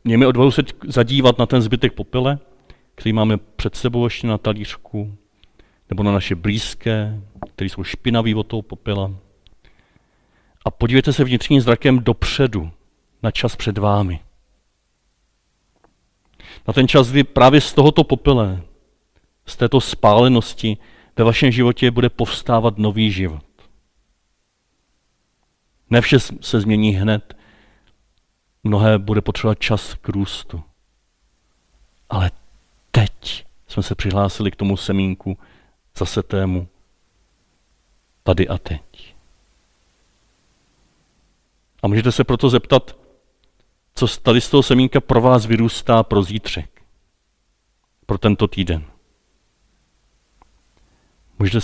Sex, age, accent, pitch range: male, 40-59, native, 95-120 Hz